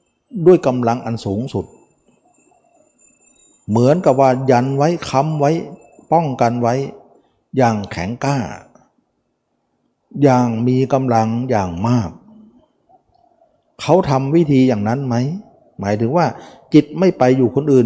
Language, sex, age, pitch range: Thai, male, 60-79, 105-140 Hz